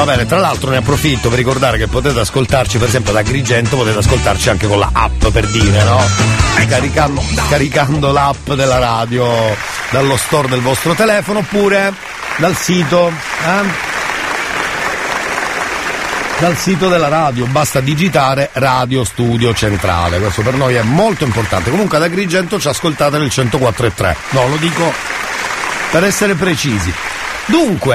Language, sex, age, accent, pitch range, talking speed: Italian, male, 50-69, native, 110-155 Hz, 145 wpm